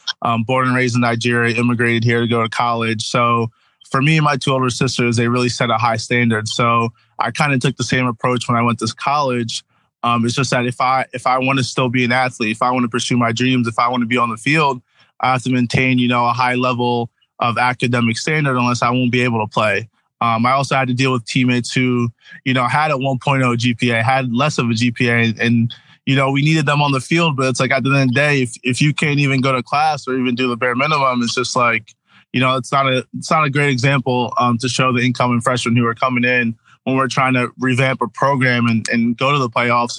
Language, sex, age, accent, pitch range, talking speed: English, male, 20-39, American, 120-135 Hz, 265 wpm